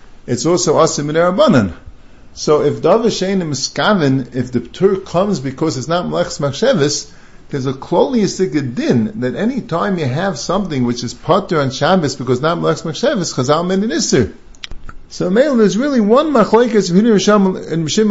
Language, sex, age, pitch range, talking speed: English, male, 50-69, 135-190 Hz, 165 wpm